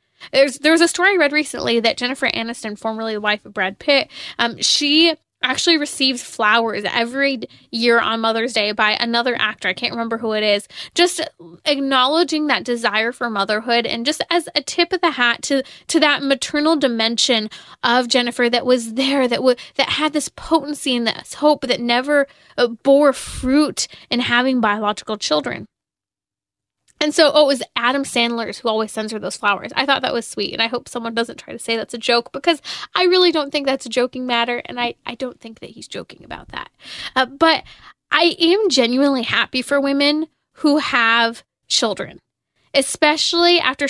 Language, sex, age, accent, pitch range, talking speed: English, female, 10-29, American, 235-295 Hz, 190 wpm